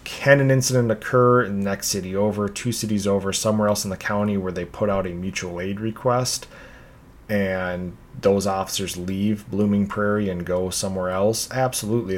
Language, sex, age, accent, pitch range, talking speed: English, male, 30-49, American, 95-115 Hz, 175 wpm